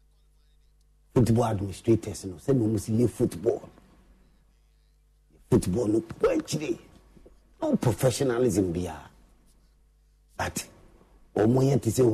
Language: English